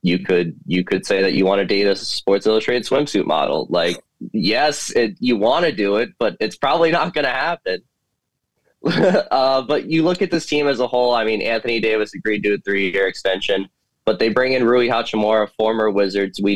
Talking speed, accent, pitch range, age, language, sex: 210 wpm, American, 95-110 Hz, 20-39, English, male